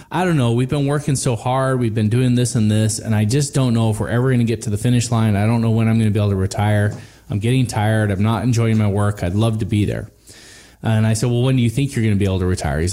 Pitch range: 105-135 Hz